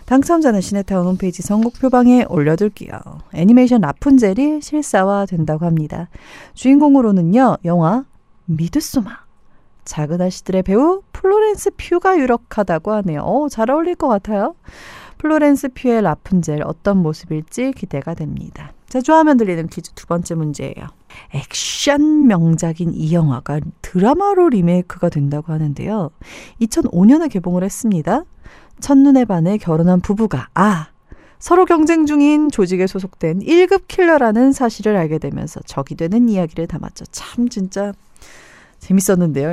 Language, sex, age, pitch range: Korean, female, 40-59, 170-260 Hz